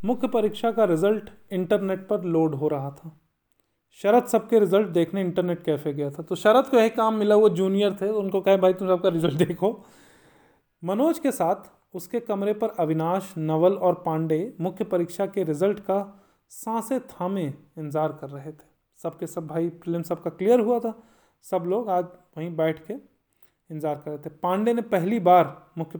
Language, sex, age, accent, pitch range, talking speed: Hindi, male, 30-49, native, 160-215 Hz, 180 wpm